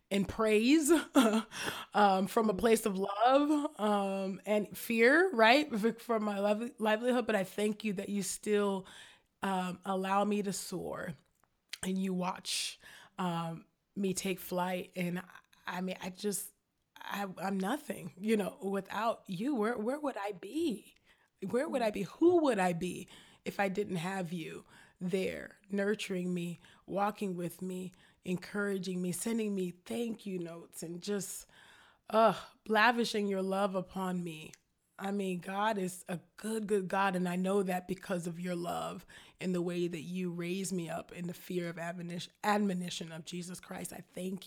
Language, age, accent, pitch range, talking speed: English, 20-39, American, 180-210 Hz, 165 wpm